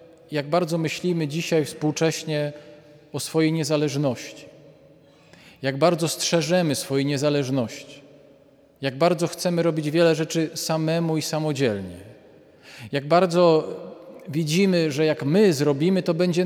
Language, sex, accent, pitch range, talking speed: Polish, male, native, 145-175 Hz, 115 wpm